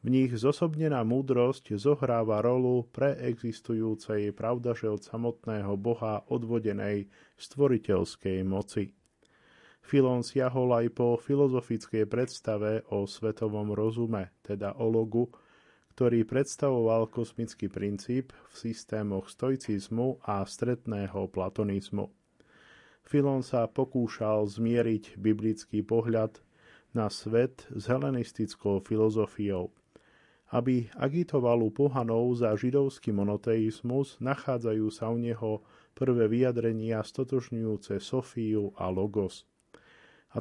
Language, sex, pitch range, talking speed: Slovak, male, 105-125 Hz, 90 wpm